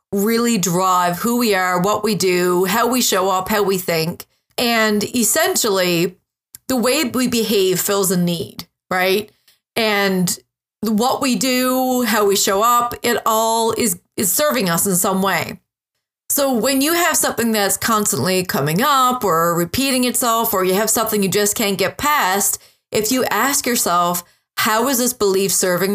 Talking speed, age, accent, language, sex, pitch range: 165 wpm, 30-49, American, English, female, 185-235 Hz